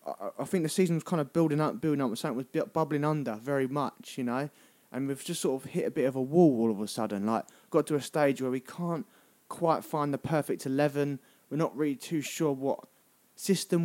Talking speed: 240 wpm